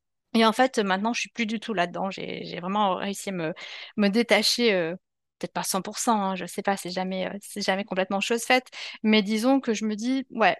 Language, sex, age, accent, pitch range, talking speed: French, female, 30-49, French, 210-260 Hz, 240 wpm